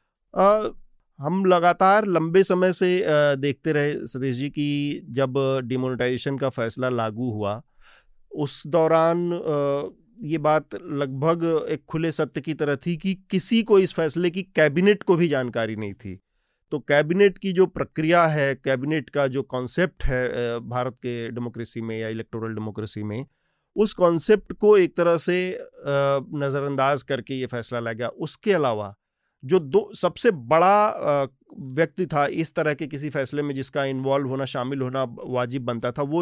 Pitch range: 130-165 Hz